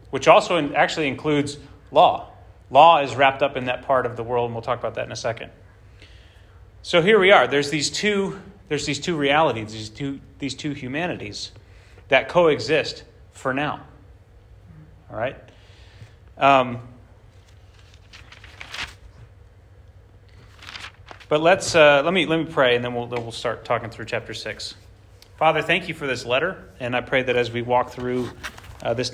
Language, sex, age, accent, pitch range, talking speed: English, male, 30-49, American, 100-140 Hz, 165 wpm